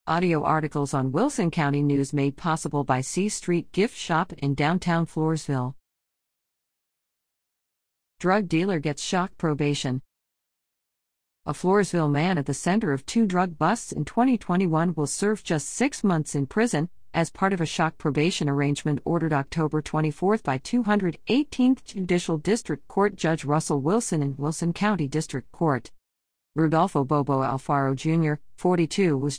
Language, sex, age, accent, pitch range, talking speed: English, female, 50-69, American, 140-185 Hz, 140 wpm